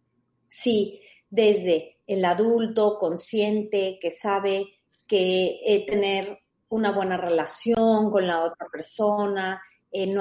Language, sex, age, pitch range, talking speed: Spanish, female, 40-59, 180-225 Hz, 100 wpm